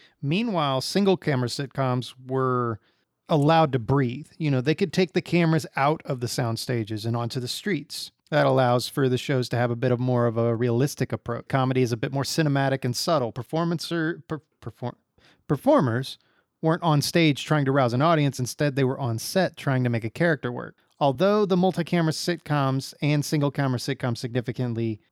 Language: English